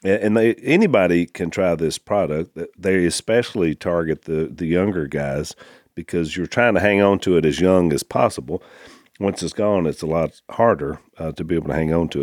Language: English